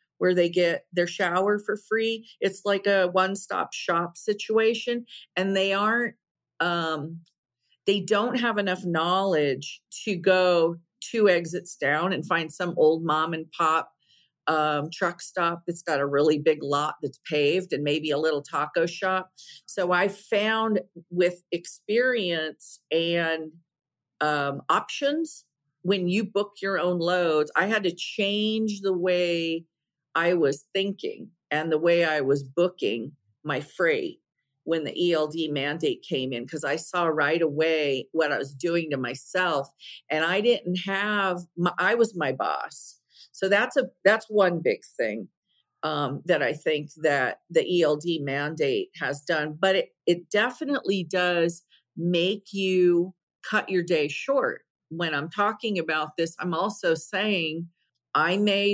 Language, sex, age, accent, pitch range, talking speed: English, female, 50-69, American, 155-200 Hz, 150 wpm